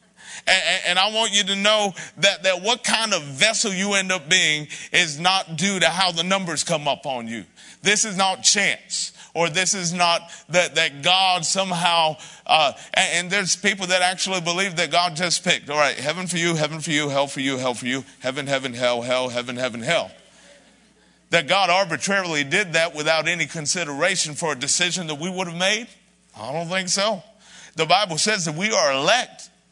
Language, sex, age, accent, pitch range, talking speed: English, male, 50-69, American, 160-195 Hz, 200 wpm